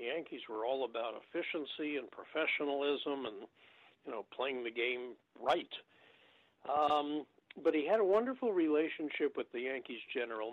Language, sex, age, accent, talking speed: English, male, 60-79, American, 150 wpm